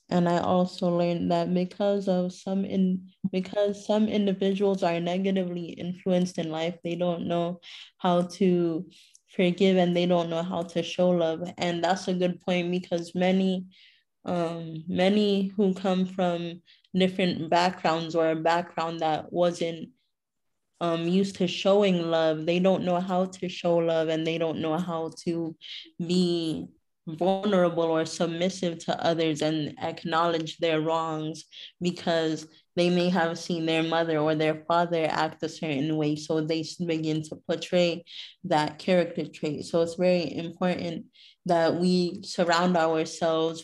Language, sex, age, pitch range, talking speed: English, female, 20-39, 165-185 Hz, 150 wpm